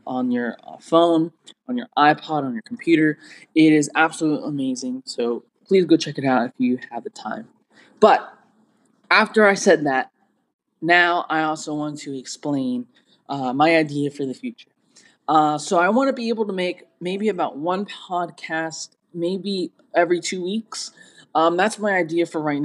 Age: 20-39